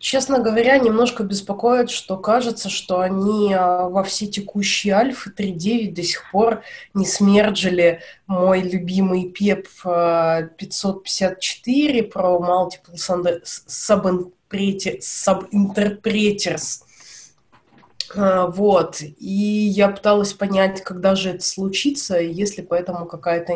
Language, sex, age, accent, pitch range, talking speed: Russian, female, 20-39, native, 165-195 Hz, 90 wpm